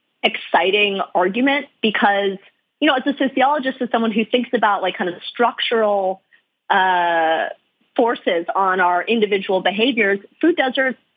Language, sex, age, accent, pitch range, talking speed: English, female, 30-49, American, 190-260 Hz, 135 wpm